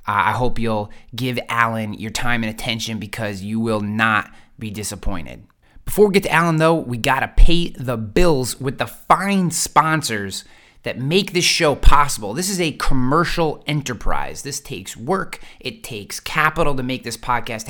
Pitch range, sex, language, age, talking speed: 115-155 Hz, male, English, 30-49, 175 wpm